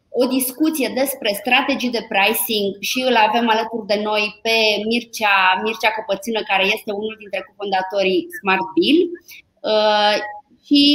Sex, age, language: female, 20-39, Romanian